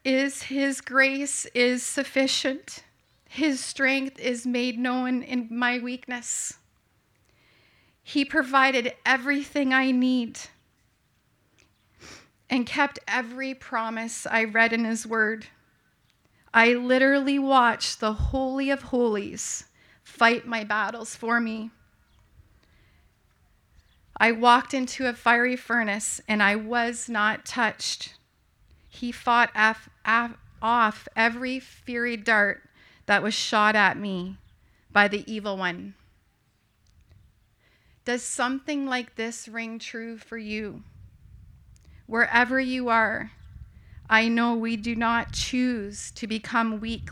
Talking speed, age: 105 wpm, 30-49